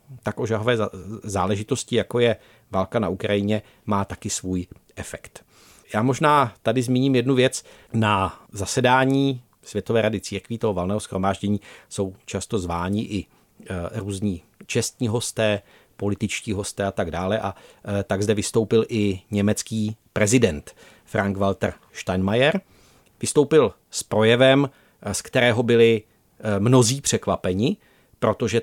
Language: Czech